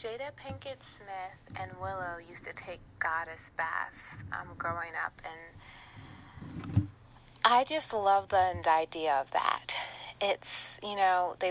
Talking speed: 135 wpm